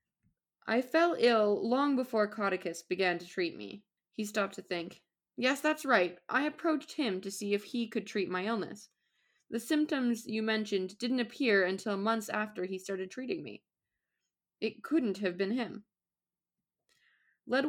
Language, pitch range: English, 185-255 Hz